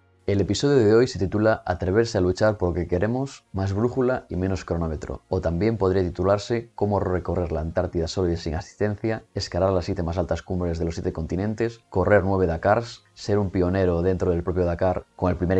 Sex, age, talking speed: male, 20-39, 200 wpm